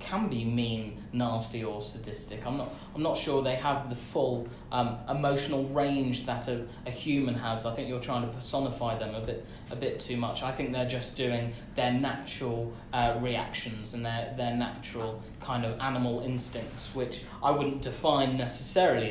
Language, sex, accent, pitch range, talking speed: English, male, British, 120-145 Hz, 180 wpm